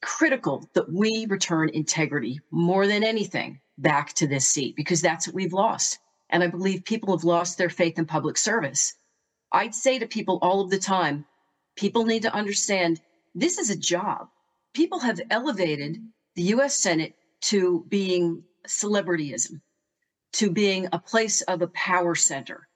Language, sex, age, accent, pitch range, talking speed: English, female, 40-59, American, 165-215 Hz, 160 wpm